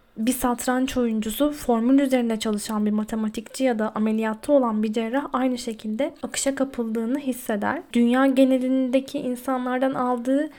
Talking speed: 130 wpm